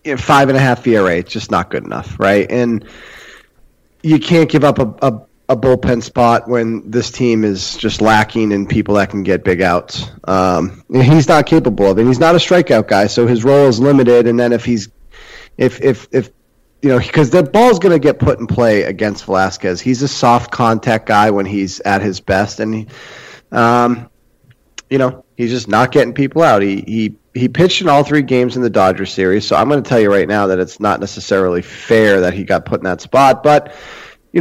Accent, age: American, 30-49